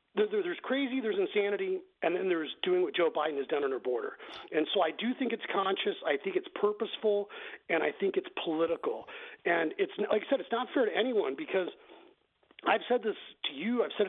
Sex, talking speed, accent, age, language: male, 215 wpm, American, 40-59, English